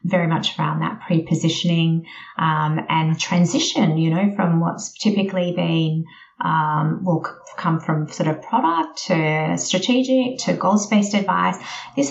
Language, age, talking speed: English, 30-49, 130 wpm